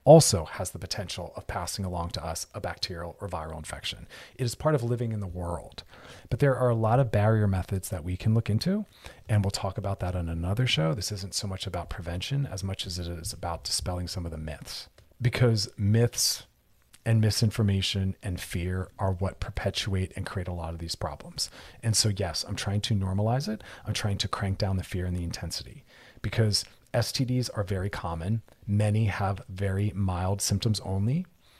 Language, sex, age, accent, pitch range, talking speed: English, male, 40-59, American, 90-110 Hz, 200 wpm